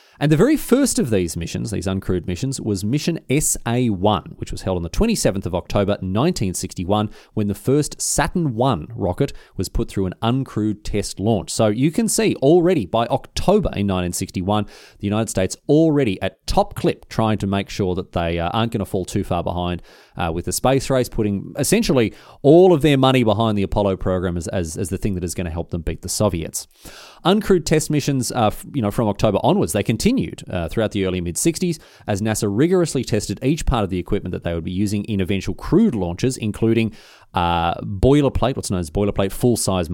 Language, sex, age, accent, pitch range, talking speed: English, male, 30-49, Australian, 90-125 Hz, 205 wpm